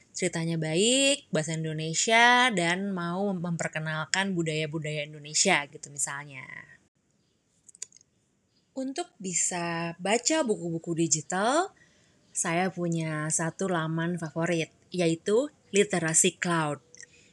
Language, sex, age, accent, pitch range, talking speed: Indonesian, female, 20-39, native, 165-205 Hz, 85 wpm